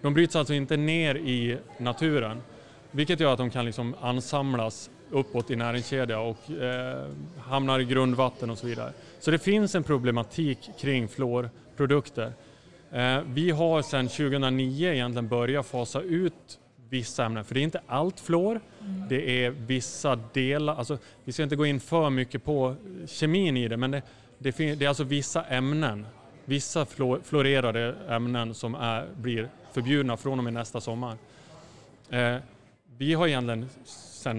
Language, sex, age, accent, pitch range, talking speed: Swedish, male, 30-49, Norwegian, 120-145 Hz, 160 wpm